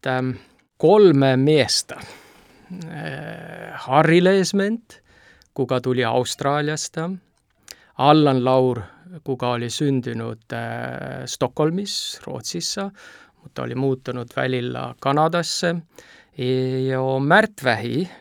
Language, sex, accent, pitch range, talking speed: Finnish, male, native, 130-155 Hz, 70 wpm